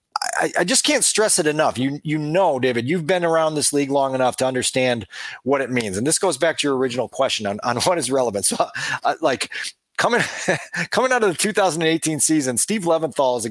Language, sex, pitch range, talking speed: English, male, 130-195 Hz, 220 wpm